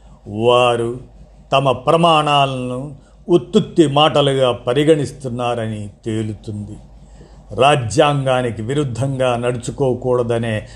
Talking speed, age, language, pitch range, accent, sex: 55 wpm, 50-69, Telugu, 120-155 Hz, native, male